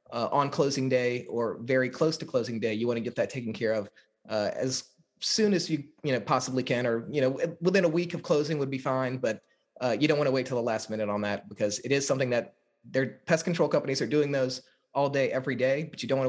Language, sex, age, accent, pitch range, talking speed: English, male, 30-49, American, 120-145 Hz, 260 wpm